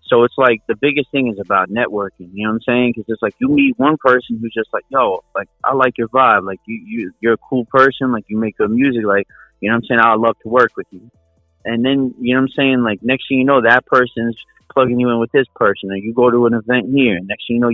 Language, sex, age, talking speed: English, male, 30-49, 290 wpm